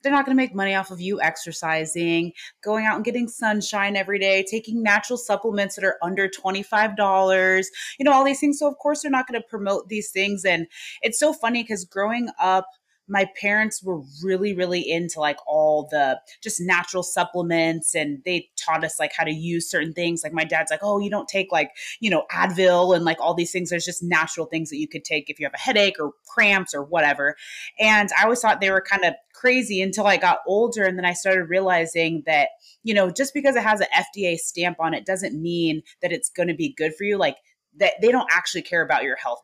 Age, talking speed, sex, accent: 30-49, 230 wpm, female, American